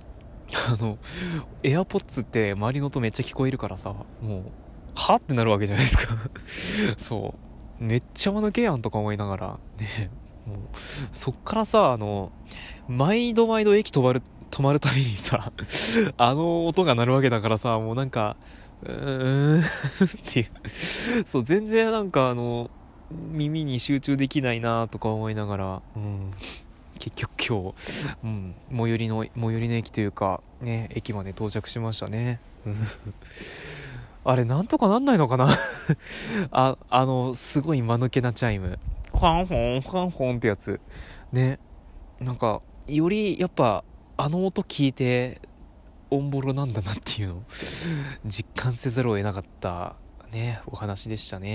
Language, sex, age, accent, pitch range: Japanese, male, 20-39, native, 105-140 Hz